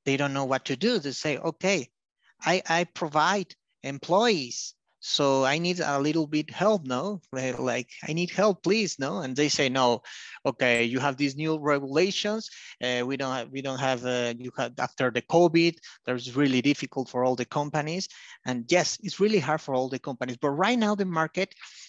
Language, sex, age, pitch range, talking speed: English, male, 30-49, 140-190 Hz, 195 wpm